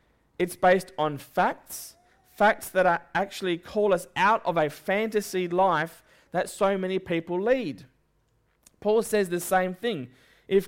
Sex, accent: male, Australian